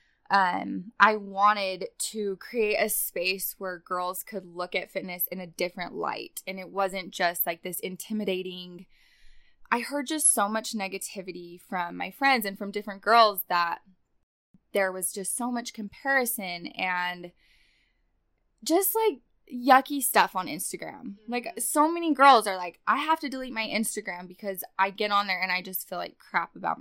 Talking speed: 170 wpm